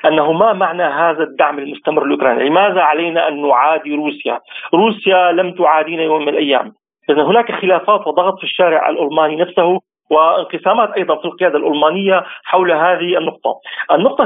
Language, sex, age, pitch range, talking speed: Arabic, male, 40-59, 155-210 Hz, 145 wpm